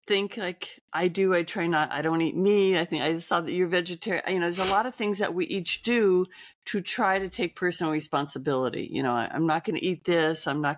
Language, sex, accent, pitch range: English, female, American, 150-190 Hz